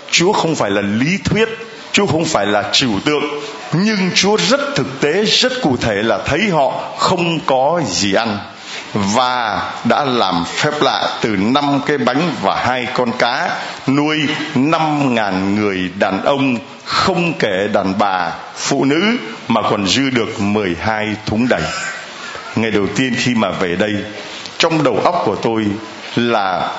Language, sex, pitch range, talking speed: Vietnamese, male, 105-150 Hz, 160 wpm